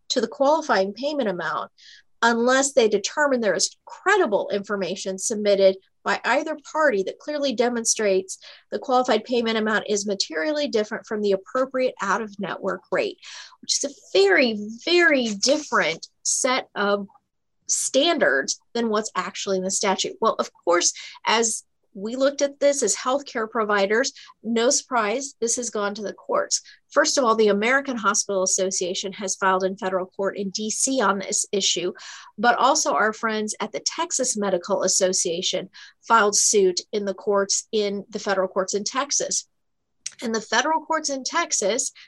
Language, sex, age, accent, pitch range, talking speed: English, female, 40-59, American, 200-270 Hz, 155 wpm